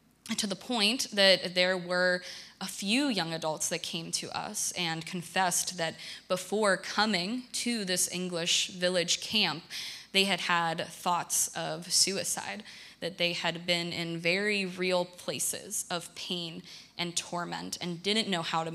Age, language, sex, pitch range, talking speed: 20-39, English, female, 170-210 Hz, 150 wpm